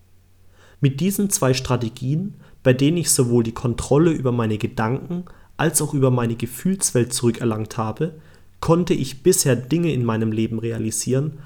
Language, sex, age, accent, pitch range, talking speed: German, male, 30-49, German, 105-150 Hz, 145 wpm